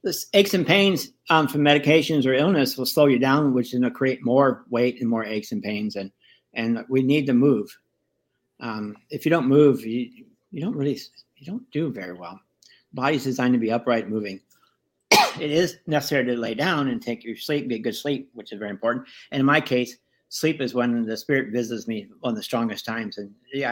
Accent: American